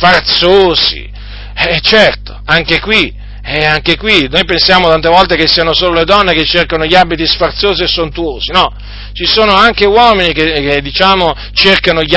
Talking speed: 170 wpm